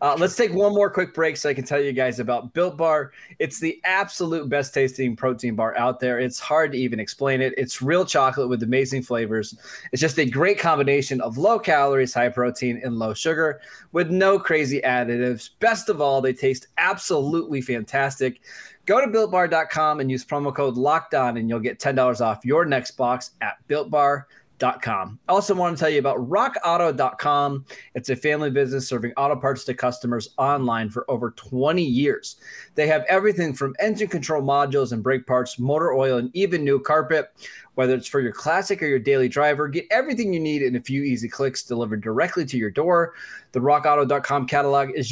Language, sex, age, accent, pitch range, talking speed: English, male, 20-39, American, 125-155 Hz, 195 wpm